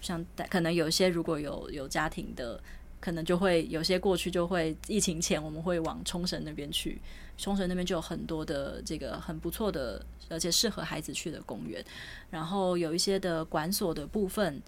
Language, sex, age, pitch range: Chinese, female, 20-39, 165-190 Hz